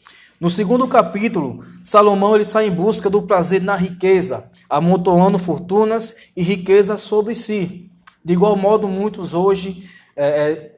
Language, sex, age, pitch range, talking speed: Portuguese, male, 20-39, 160-195 Hz, 135 wpm